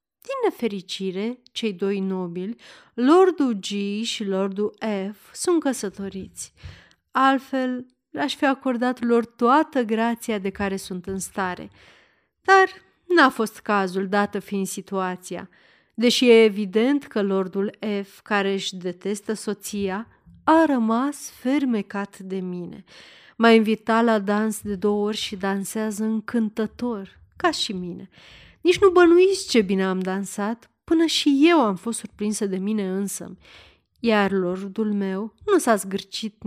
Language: Romanian